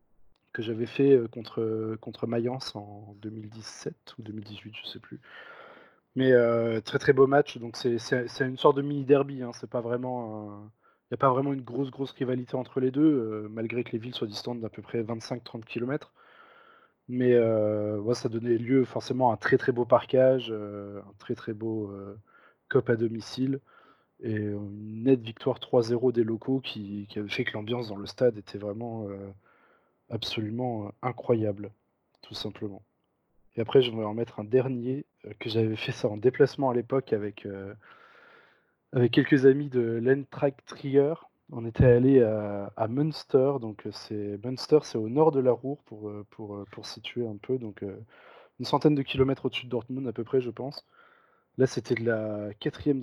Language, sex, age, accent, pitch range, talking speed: French, male, 20-39, French, 110-130 Hz, 185 wpm